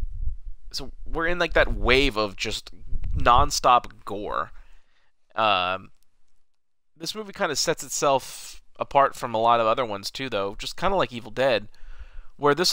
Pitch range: 95-135 Hz